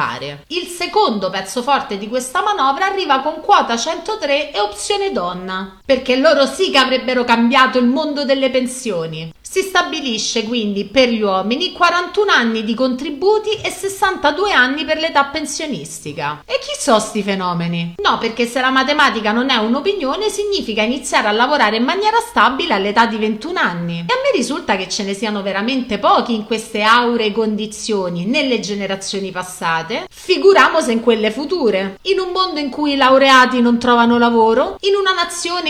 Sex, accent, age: female, native, 30-49